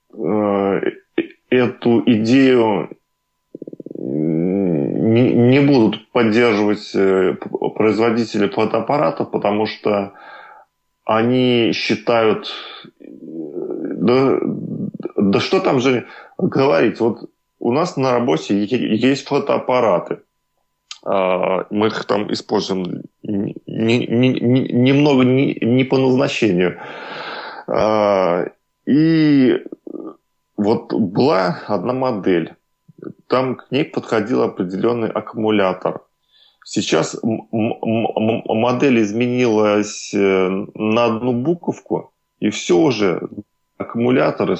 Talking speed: 75 wpm